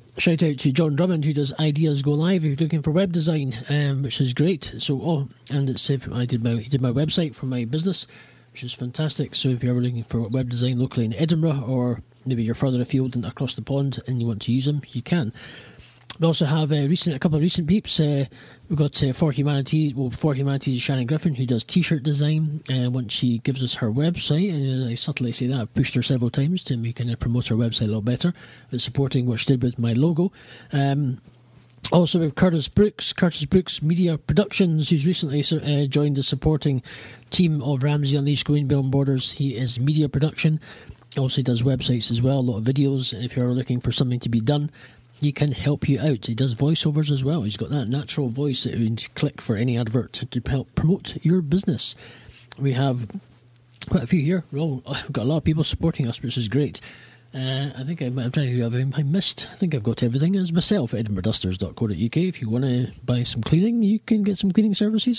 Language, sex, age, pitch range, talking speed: English, male, 30-49, 125-155 Hz, 220 wpm